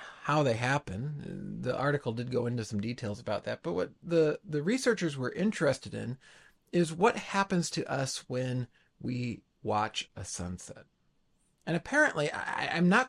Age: 40-59